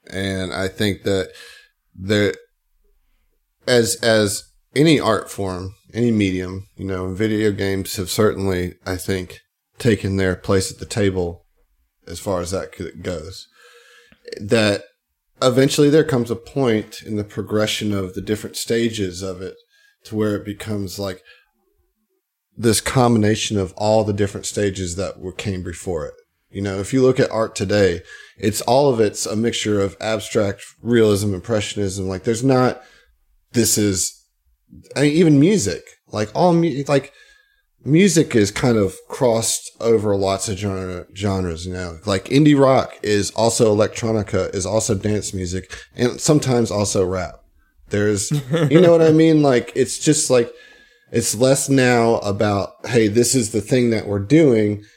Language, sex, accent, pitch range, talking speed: English, male, American, 95-125 Hz, 155 wpm